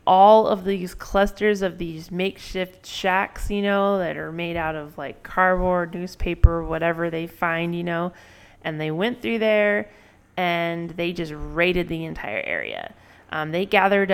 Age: 20-39